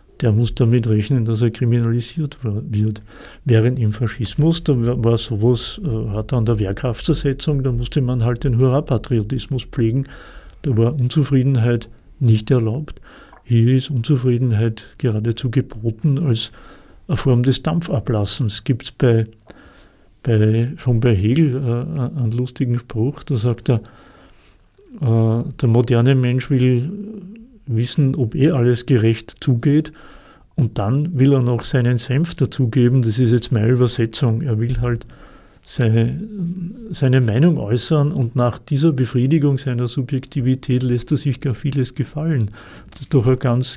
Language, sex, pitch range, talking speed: German, male, 115-140 Hz, 140 wpm